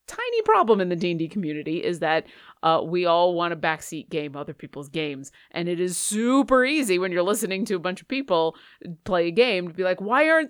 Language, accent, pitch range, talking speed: English, American, 185-260 Hz, 225 wpm